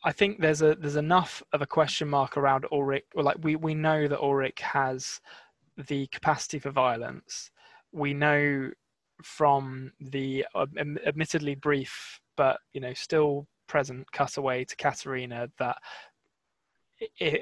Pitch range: 130-150 Hz